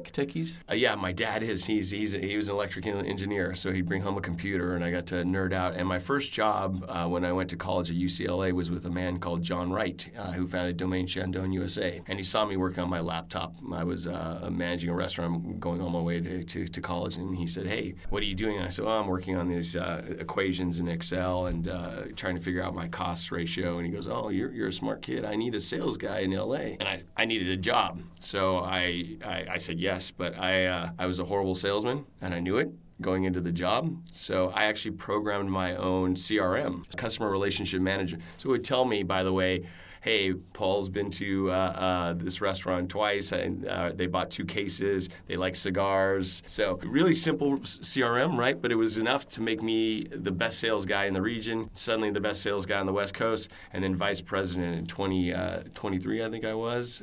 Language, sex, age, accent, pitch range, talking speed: English, male, 30-49, American, 90-100 Hz, 235 wpm